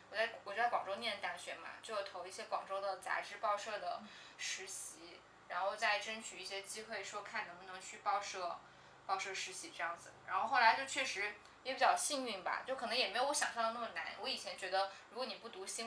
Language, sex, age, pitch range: Chinese, female, 10-29, 200-270 Hz